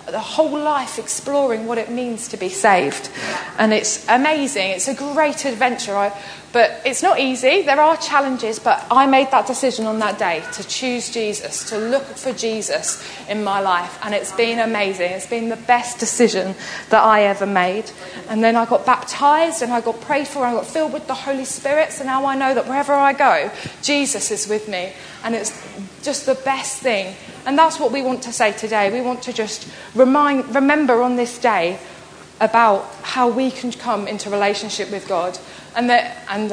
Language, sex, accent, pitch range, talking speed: English, female, British, 215-260 Hz, 195 wpm